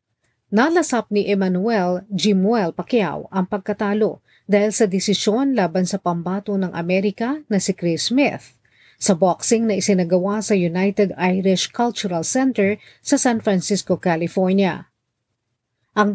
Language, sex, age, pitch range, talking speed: Filipino, female, 40-59, 175-215 Hz, 125 wpm